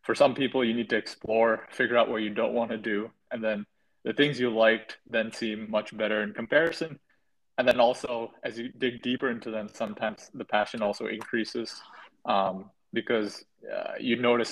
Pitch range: 110-135 Hz